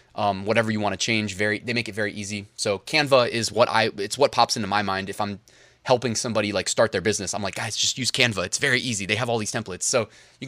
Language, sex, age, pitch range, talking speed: English, male, 20-39, 105-130 Hz, 270 wpm